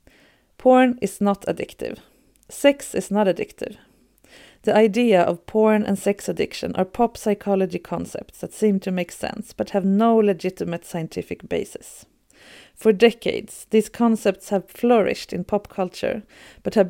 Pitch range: 180-220 Hz